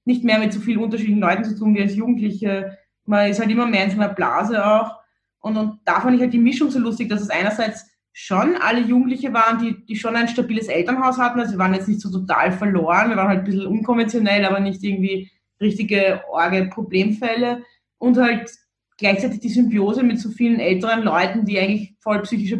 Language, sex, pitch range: German, female, 200-235 Hz